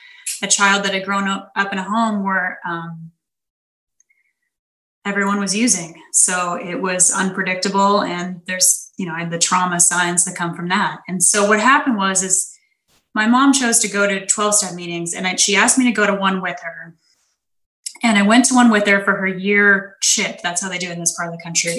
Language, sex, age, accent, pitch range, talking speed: English, female, 10-29, American, 180-230 Hz, 210 wpm